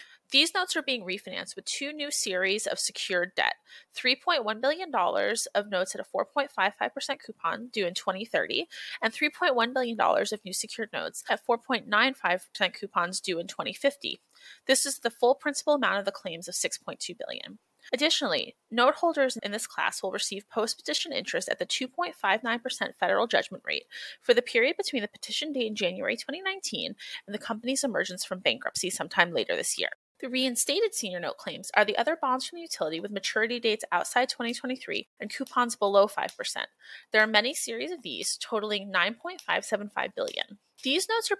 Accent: American